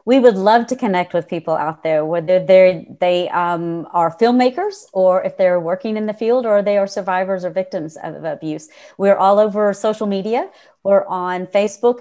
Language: English